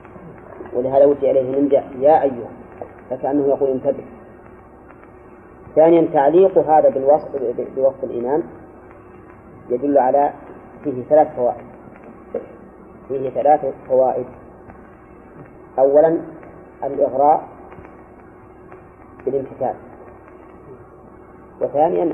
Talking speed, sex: 70 wpm, female